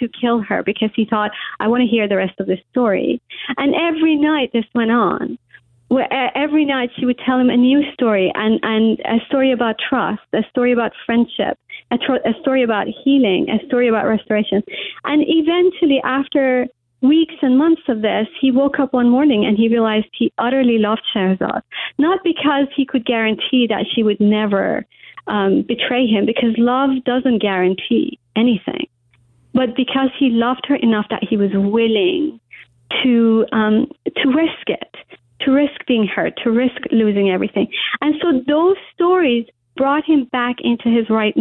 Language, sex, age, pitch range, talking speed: English, female, 40-59, 225-290 Hz, 170 wpm